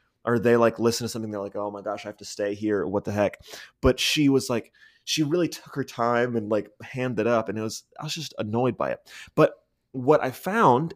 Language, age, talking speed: English, 20-39, 250 wpm